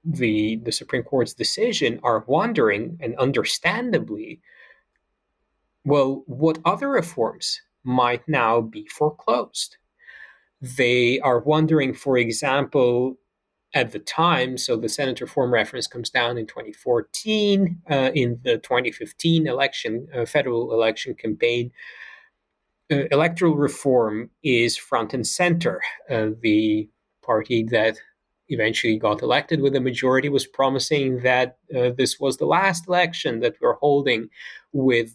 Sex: male